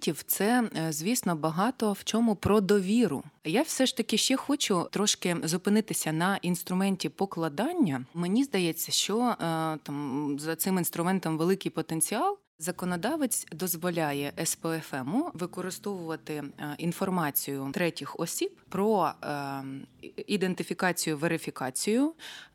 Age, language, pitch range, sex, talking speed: 20-39, Ukrainian, 160-215 Hz, female, 100 wpm